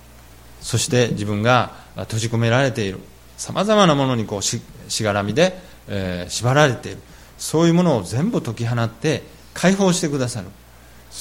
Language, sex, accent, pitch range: Japanese, male, native, 95-160 Hz